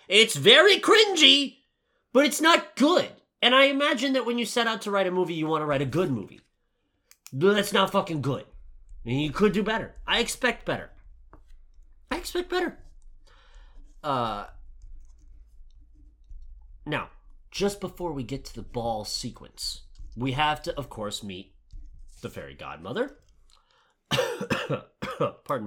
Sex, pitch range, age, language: male, 115-190 Hz, 30-49, English